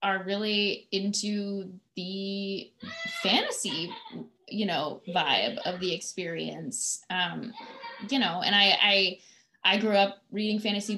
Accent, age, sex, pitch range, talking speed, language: American, 20-39, female, 180-215 Hz, 120 wpm, English